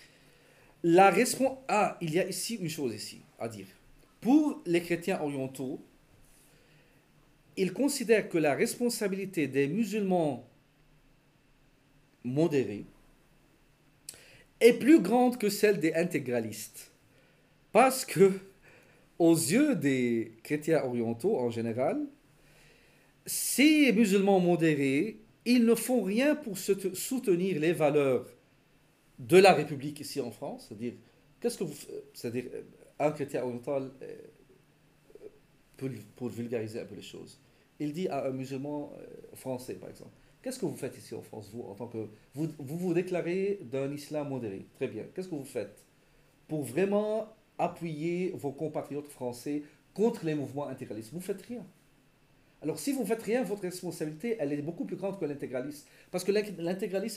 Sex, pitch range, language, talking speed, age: male, 140-195 Hz, French, 145 wpm, 50-69